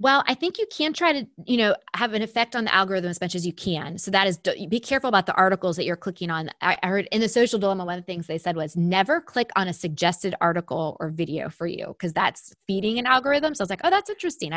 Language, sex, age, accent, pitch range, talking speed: English, female, 20-39, American, 165-210 Hz, 275 wpm